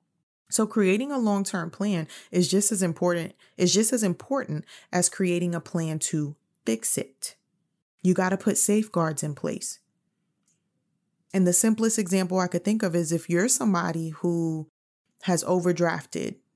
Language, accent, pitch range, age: English, American, 160-195 Hz, 20-39